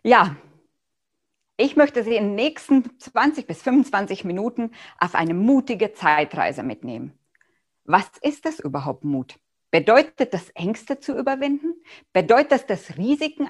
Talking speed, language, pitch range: 135 wpm, German, 175-270 Hz